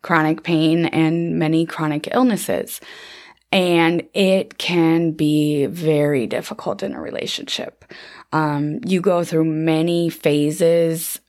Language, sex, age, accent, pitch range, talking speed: English, female, 20-39, American, 160-180 Hz, 110 wpm